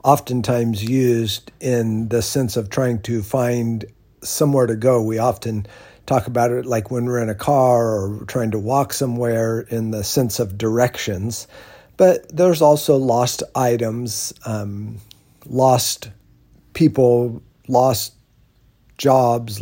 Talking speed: 130 wpm